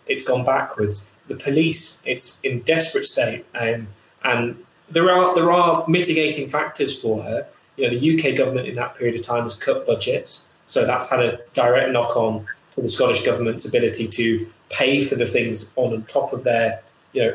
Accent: British